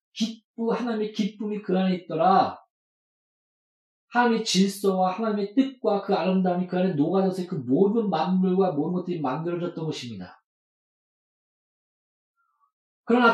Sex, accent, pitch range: male, native, 150-210 Hz